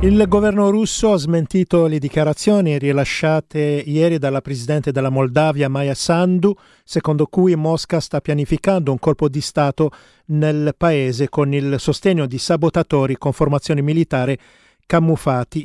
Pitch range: 110-155 Hz